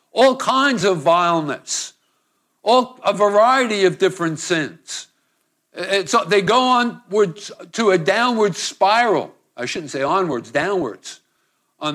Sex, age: male, 60-79